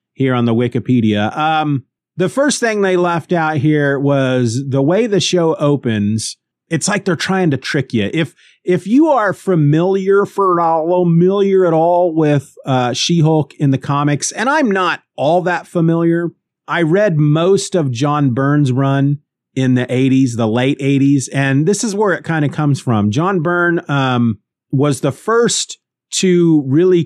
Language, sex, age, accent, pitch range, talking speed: English, male, 40-59, American, 115-165 Hz, 170 wpm